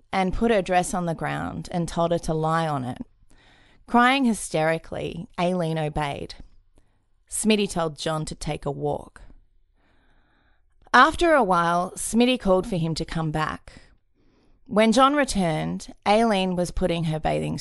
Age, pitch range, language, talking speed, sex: 20-39, 145-185 Hz, English, 145 wpm, female